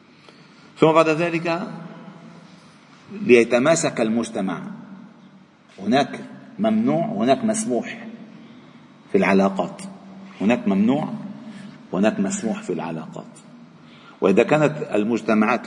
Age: 50-69